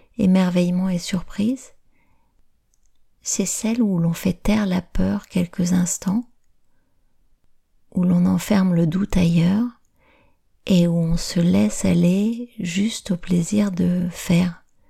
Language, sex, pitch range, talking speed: French, female, 175-195 Hz, 120 wpm